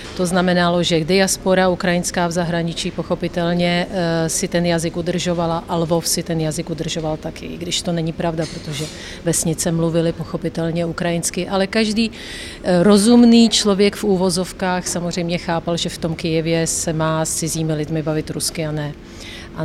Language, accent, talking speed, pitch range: Czech, native, 155 wpm, 165-195 Hz